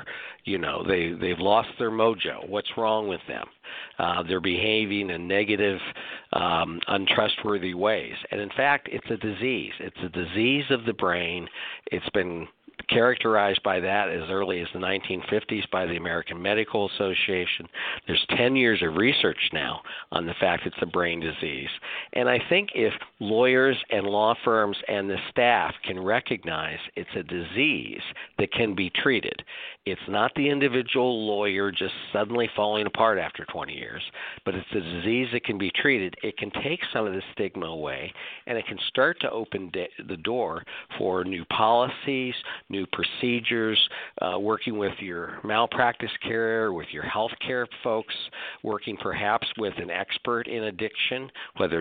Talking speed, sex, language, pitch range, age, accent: 160 wpm, male, English, 95-115 Hz, 50-69, American